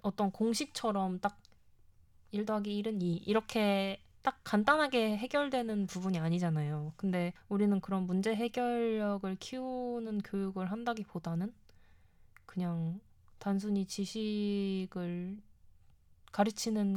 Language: Korean